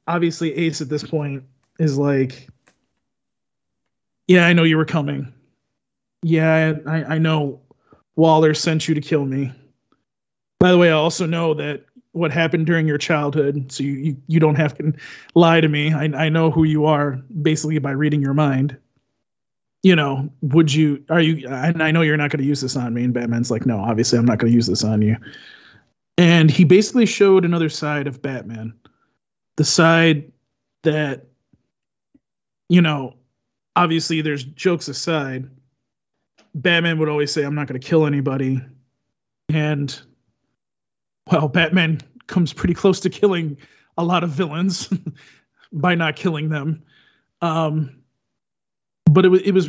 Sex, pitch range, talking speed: male, 135-165 Hz, 160 wpm